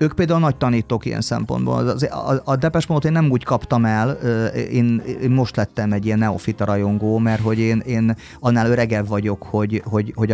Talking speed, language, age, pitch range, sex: 205 wpm, Hungarian, 30-49, 105-130 Hz, male